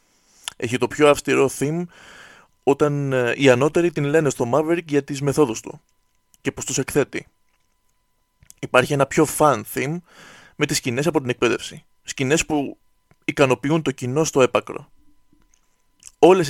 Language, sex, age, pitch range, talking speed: Greek, male, 20-39, 125-155 Hz, 140 wpm